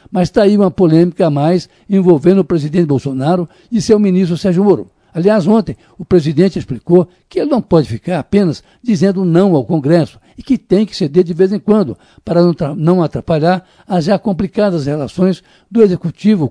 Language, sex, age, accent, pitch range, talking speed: Portuguese, male, 60-79, Brazilian, 155-200 Hz, 180 wpm